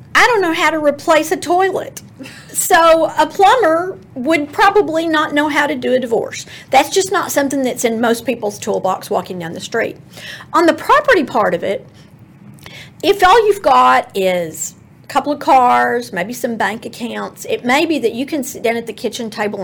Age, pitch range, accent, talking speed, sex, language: 40-59, 220-320 Hz, American, 195 wpm, female, English